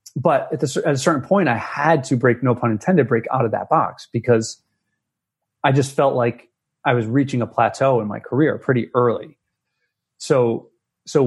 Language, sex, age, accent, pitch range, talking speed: English, male, 30-49, American, 120-155 Hz, 180 wpm